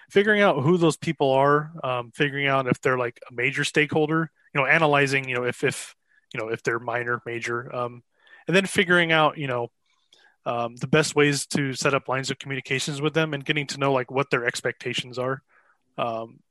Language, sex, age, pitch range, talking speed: English, male, 20-39, 125-145 Hz, 205 wpm